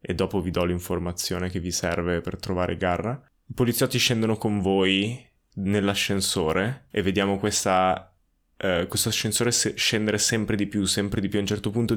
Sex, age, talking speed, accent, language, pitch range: male, 20-39, 170 wpm, native, Italian, 90-105 Hz